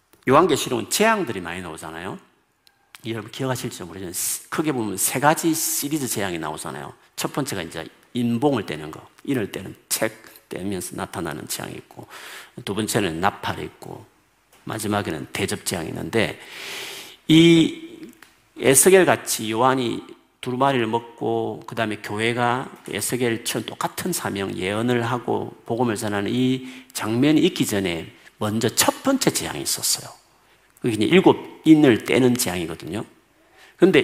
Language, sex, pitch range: Korean, male, 110-165 Hz